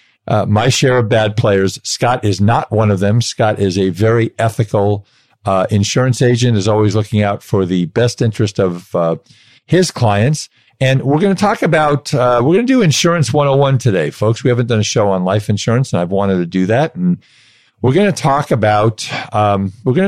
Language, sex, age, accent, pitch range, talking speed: English, male, 50-69, American, 100-130 Hz, 235 wpm